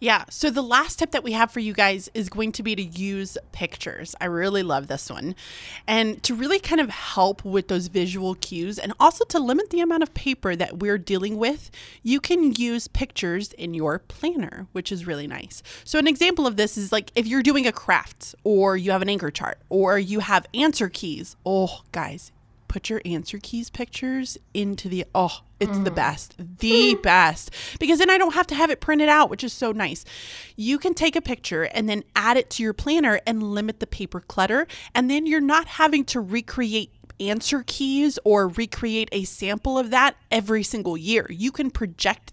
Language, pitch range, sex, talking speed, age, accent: English, 185-255 Hz, female, 205 wpm, 20-39, American